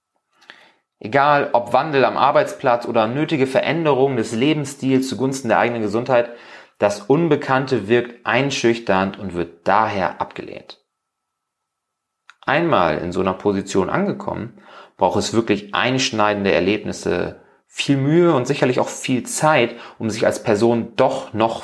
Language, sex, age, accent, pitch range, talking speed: German, male, 30-49, German, 105-135 Hz, 130 wpm